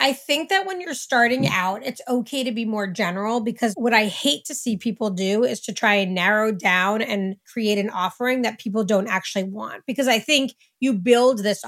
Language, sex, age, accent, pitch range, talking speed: English, female, 30-49, American, 205-245 Hz, 215 wpm